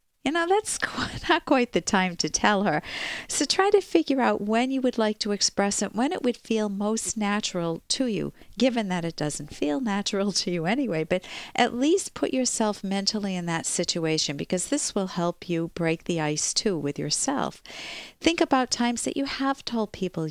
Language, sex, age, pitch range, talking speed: English, female, 50-69, 160-230 Hz, 200 wpm